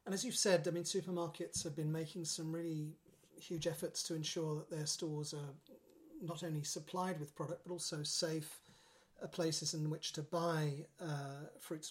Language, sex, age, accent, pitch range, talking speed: English, male, 40-59, British, 160-185 Hz, 180 wpm